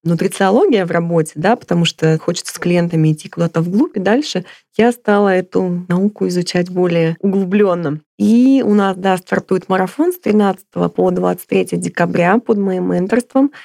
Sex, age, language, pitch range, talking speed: female, 20-39, Russian, 175-215 Hz, 155 wpm